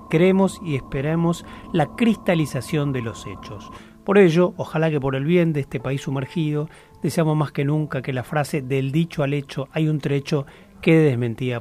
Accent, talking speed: Argentinian, 180 wpm